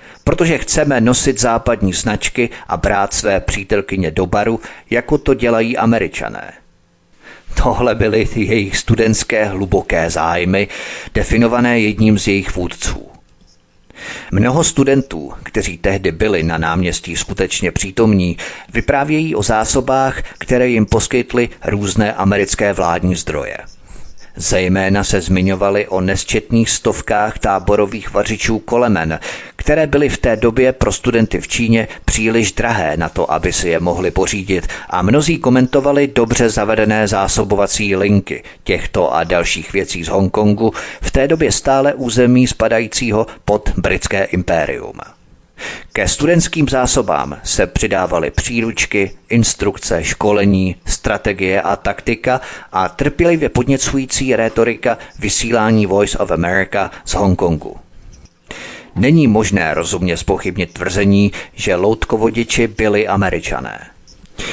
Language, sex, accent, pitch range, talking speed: Czech, male, native, 95-120 Hz, 115 wpm